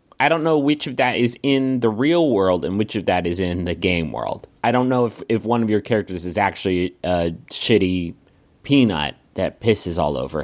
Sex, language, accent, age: male, English, American, 30-49